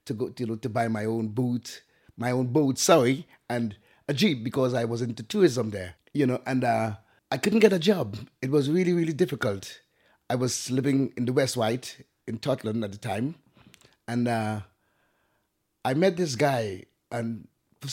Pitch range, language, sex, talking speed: 115-145 Hz, English, male, 190 wpm